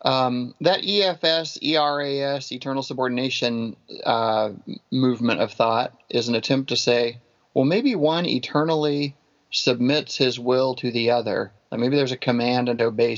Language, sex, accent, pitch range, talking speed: English, male, American, 115-140 Hz, 140 wpm